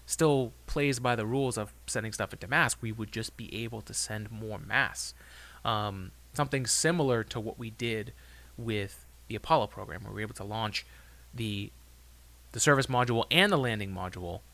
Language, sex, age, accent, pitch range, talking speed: English, male, 20-39, American, 85-125 Hz, 180 wpm